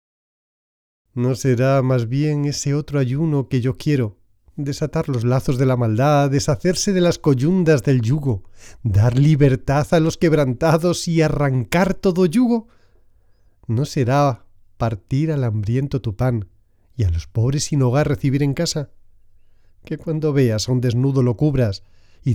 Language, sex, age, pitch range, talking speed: Spanish, male, 40-59, 105-150 Hz, 150 wpm